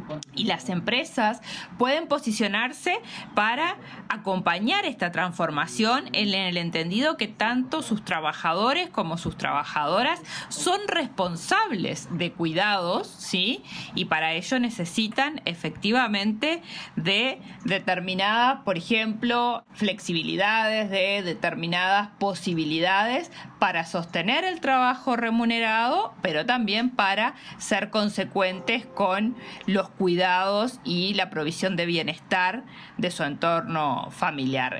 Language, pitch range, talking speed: Spanish, 180-240 Hz, 105 wpm